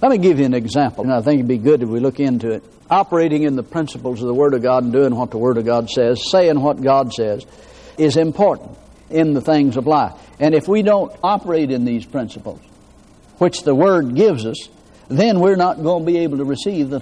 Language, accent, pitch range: English, American, 130-185 Hz